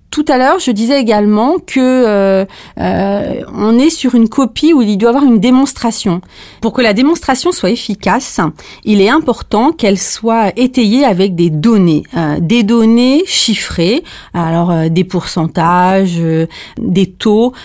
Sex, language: female, French